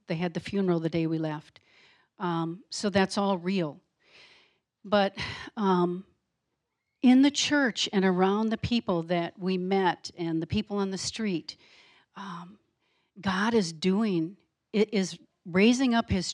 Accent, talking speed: American, 145 wpm